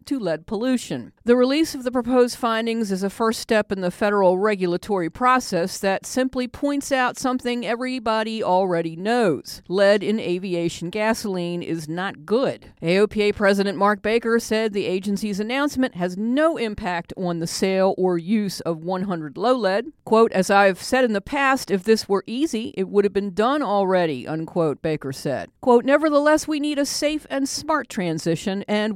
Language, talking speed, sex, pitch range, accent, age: English, 170 wpm, female, 175-240 Hz, American, 50-69